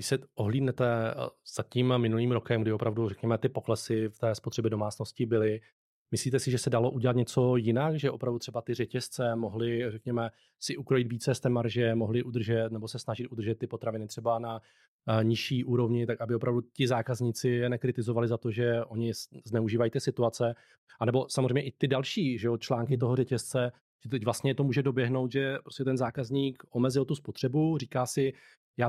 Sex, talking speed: male, 185 wpm